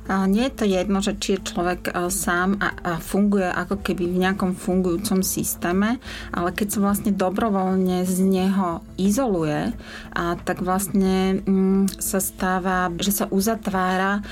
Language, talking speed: Slovak, 145 wpm